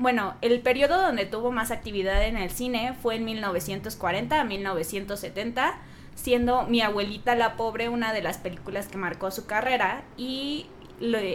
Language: Spanish